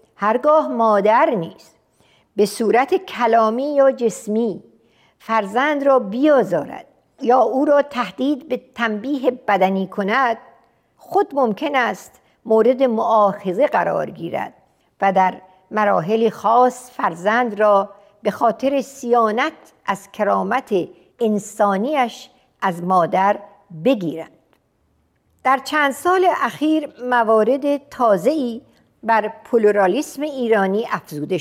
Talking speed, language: 95 wpm, Persian